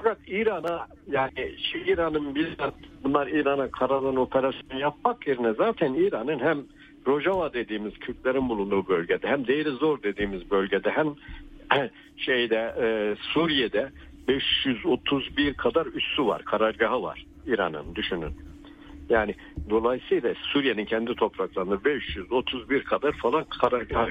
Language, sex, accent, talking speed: Turkish, male, native, 110 wpm